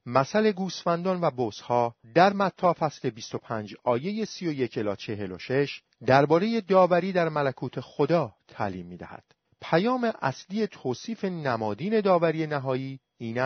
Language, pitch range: Persian, 130-190 Hz